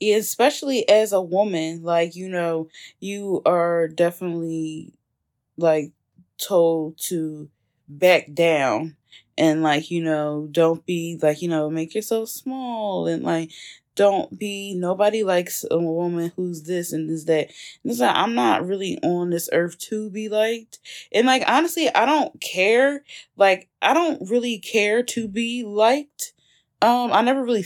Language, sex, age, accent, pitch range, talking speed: English, female, 20-39, American, 165-225 Hz, 150 wpm